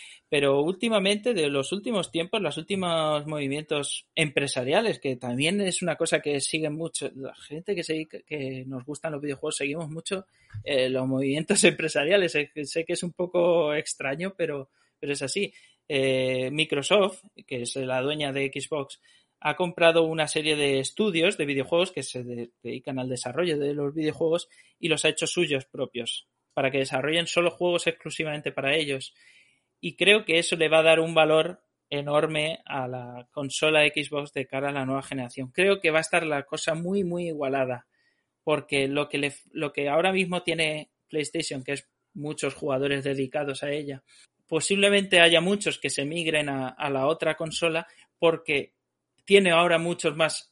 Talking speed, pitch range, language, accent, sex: 170 wpm, 140-165 Hz, Spanish, Spanish, male